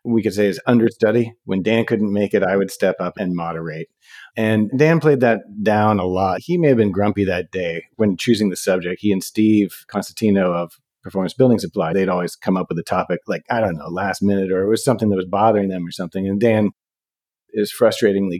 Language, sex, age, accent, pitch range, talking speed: English, male, 40-59, American, 95-120 Hz, 225 wpm